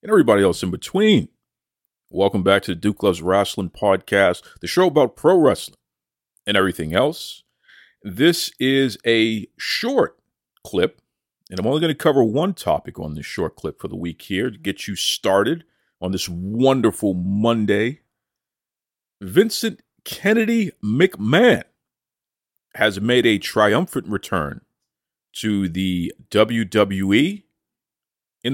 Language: English